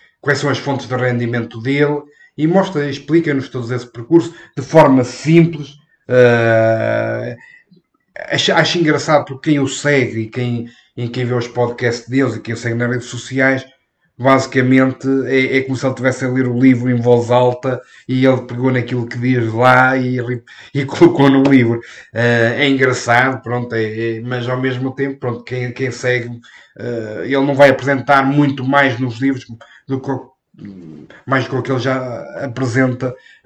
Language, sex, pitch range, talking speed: Portuguese, male, 120-135 Hz, 175 wpm